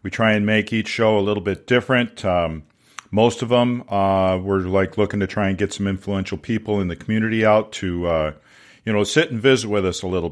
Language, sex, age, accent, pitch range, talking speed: English, male, 50-69, American, 95-115 Hz, 235 wpm